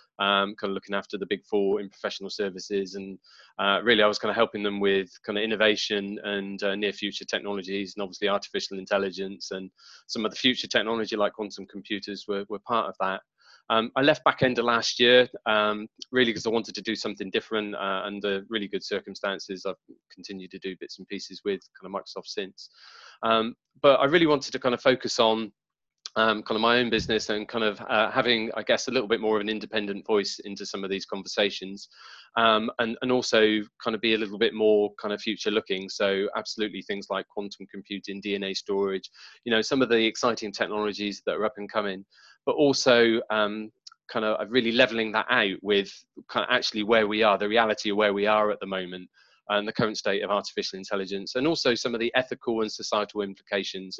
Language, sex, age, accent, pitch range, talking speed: English, male, 20-39, British, 100-115 Hz, 210 wpm